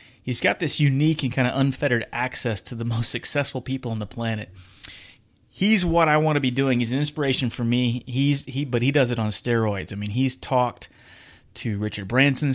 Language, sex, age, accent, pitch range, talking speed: English, male, 30-49, American, 110-130 Hz, 210 wpm